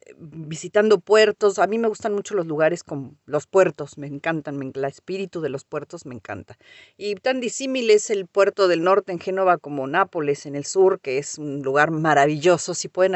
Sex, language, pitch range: female, Spanish, 155-210 Hz